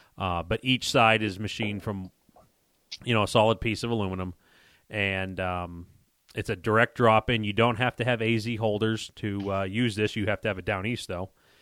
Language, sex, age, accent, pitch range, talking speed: English, male, 30-49, American, 100-115 Hz, 200 wpm